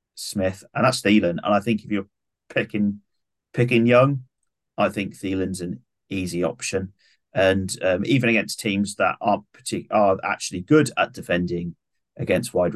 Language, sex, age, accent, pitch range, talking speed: English, male, 30-49, British, 90-115 Hz, 155 wpm